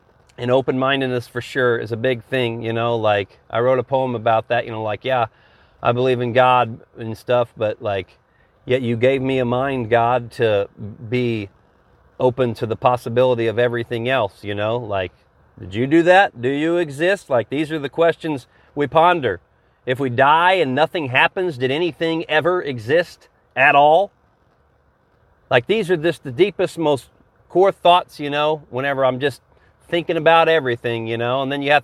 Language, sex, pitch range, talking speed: English, male, 120-150 Hz, 185 wpm